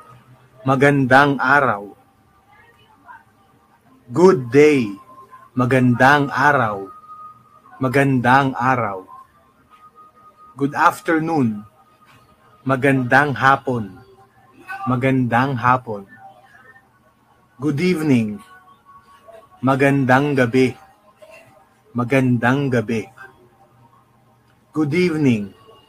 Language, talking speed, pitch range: Filipino, 50 wpm, 120-160 Hz